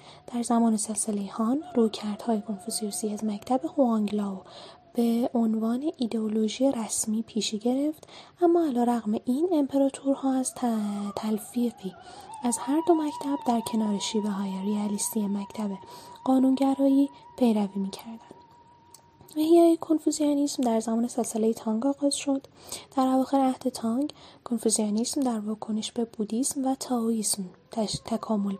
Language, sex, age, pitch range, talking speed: Persian, female, 10-29, 215-275 Hz, 120 wpm